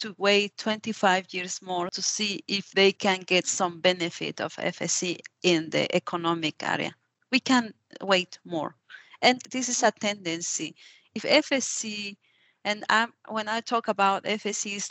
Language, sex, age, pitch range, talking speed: English, female, 40-59, 180-215 Hz, 155 wpm